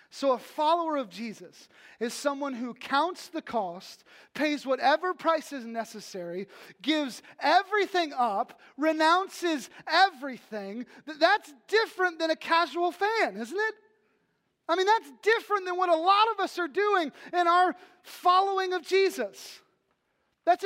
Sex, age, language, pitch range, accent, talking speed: male, 30-49, English, 265-360 Hz, American, 135 wpm